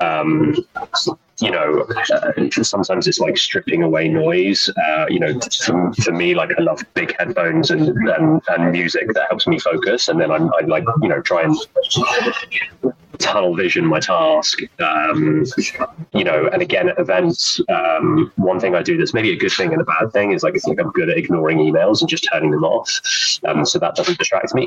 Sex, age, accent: male, 30-49, British